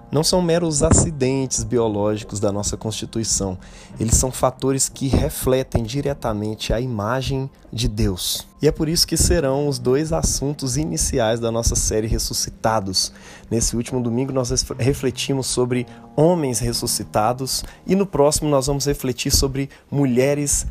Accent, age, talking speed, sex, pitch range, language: Brazilian, 20-39, 140 wpm, male, 115-145 Hz, Portuguese